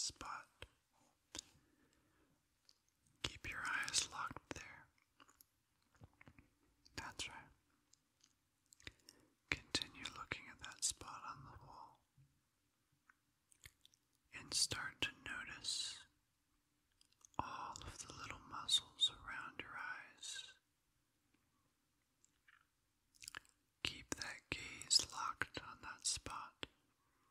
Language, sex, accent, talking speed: English, male, American, 75 wpm